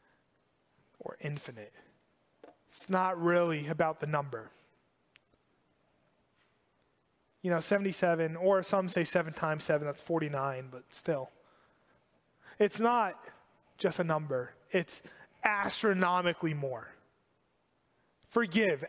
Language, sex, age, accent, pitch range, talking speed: English, male, 20-39, American, 165-230 Hz, 95 wpm